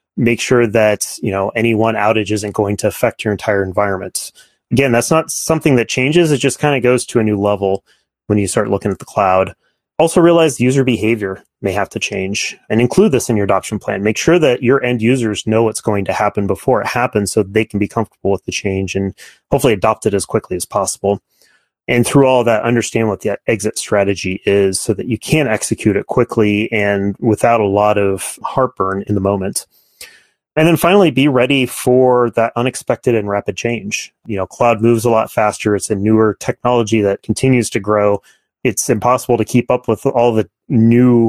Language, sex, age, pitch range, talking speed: English, male, 30-49, 100-120 Hz, 210 wpm